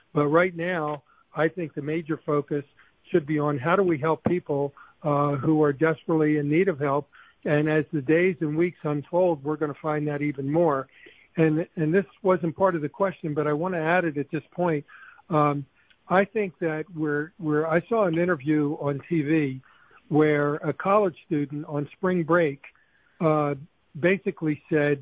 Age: 50-69